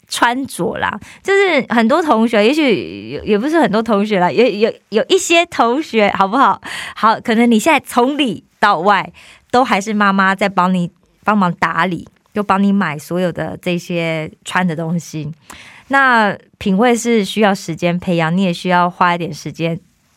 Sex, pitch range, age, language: female, 180-250 Hz, 20-39, Korean